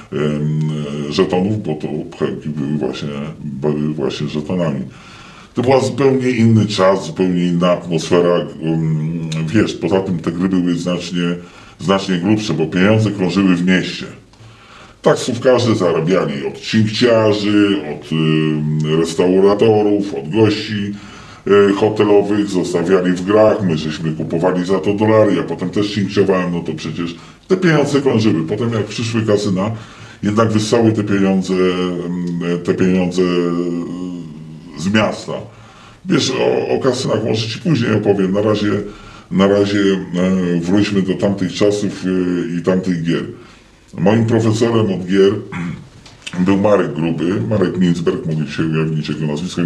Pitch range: 85-105 Hz